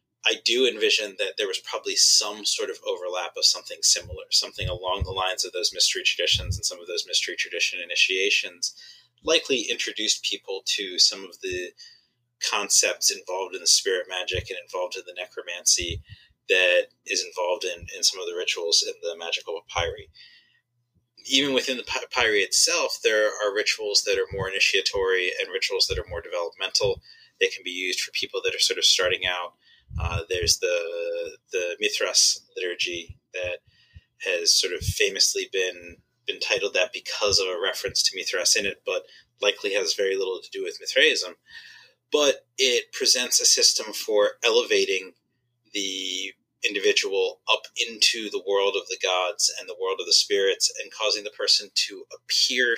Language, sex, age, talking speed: English, male, 30-49, 170 wpm